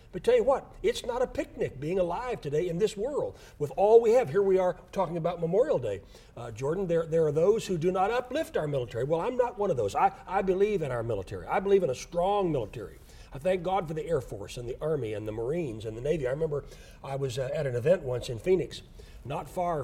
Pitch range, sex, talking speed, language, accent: 145-215 Hz, male, 255 wpm, English, American